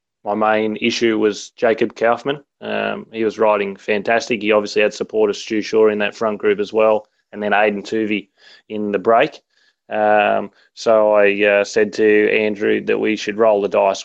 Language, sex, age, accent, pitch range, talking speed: English, male, 20-39, Australian, 100-115 Hz, 185 wpm